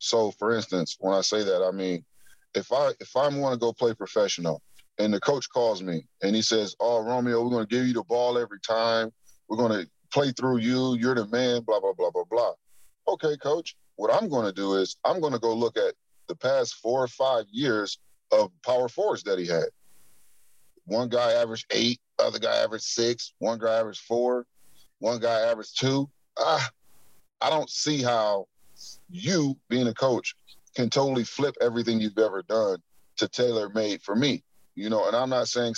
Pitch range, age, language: 110-150 Hz, 30-49, English